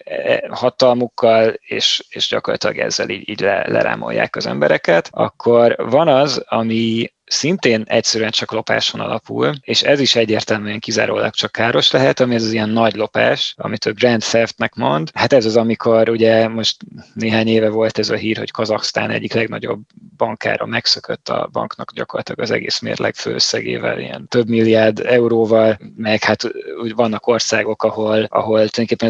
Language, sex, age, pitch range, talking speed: Hungarian, male, 20-39, 110-120 Hz, 155 wpm